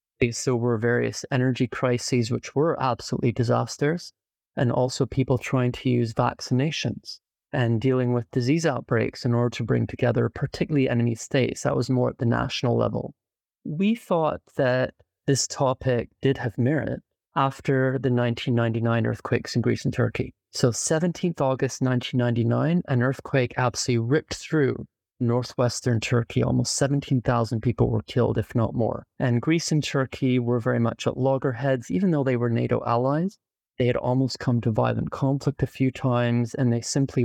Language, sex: English, male